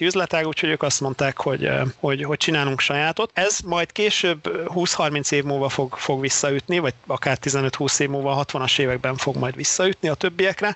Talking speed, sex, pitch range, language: 180 wpm, male, 140-165 Hz, Hungarian